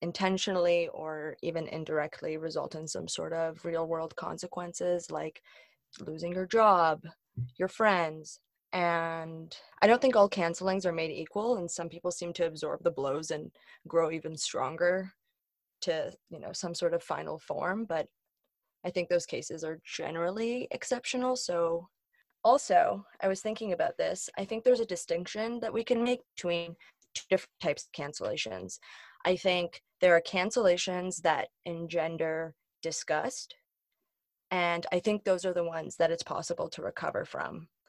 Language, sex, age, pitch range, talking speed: English, female, 20-39, 170-195 Hz, 155 wpm